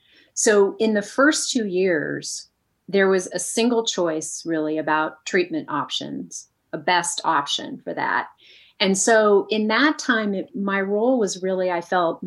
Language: English